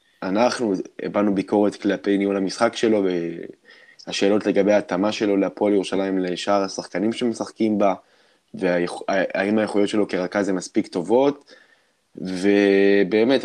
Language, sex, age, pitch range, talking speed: Hebrew, male, 20-39, 100-120 Hz, 110 wpm